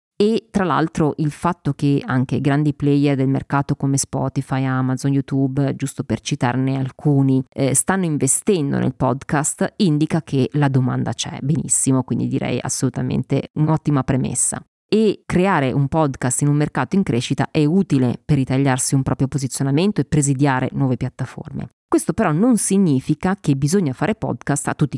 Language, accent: Italian, native